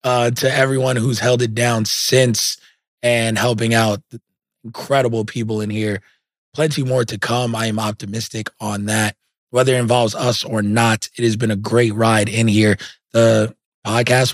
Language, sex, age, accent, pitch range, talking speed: English, male, 20-39, American, 110-125 Hz, 165 wpm